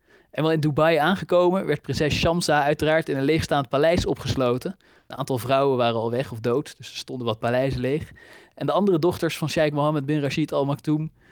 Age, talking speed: 20-39, 205 wpm